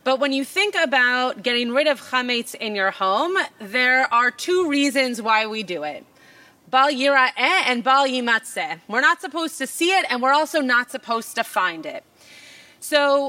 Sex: female